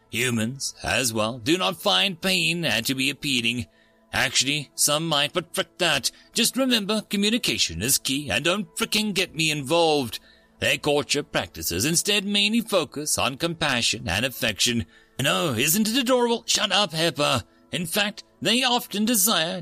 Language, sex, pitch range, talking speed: English, male, 120-195 Hz, 155 wpm